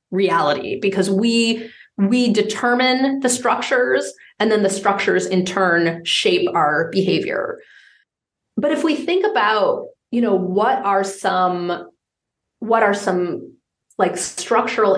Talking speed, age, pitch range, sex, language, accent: 125 wpm, 30-49, 185-235 Hz, female, English, American